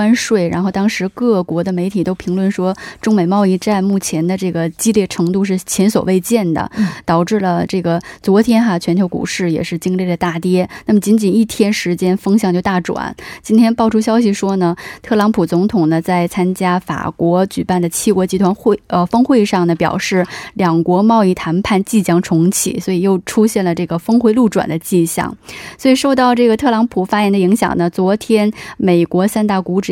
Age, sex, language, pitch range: 20-39, female, Korean, 175-220 Hz